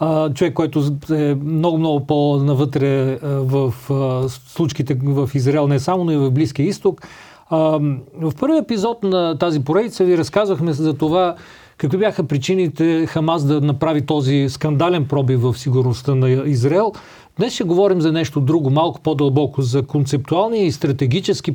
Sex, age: male, 40-59